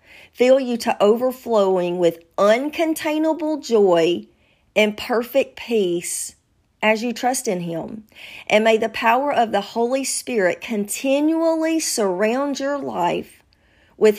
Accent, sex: American, female